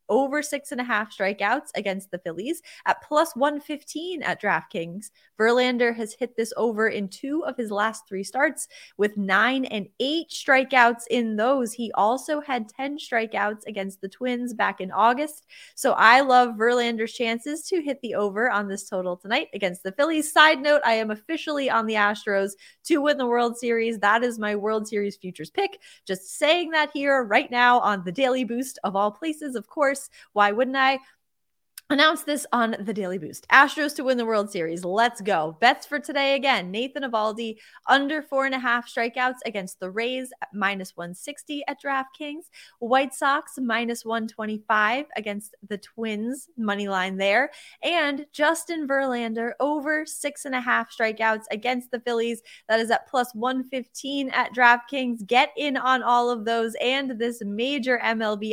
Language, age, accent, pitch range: English, 20-39, American, 215-275 Hz